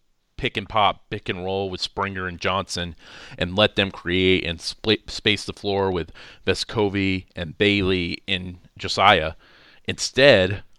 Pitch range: 95-110 Hz